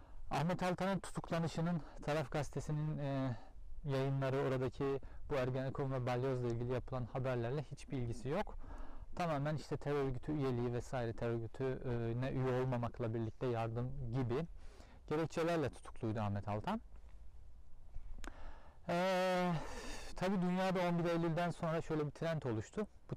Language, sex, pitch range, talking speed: Turkish, male, 115-155 Hz, 120 wpm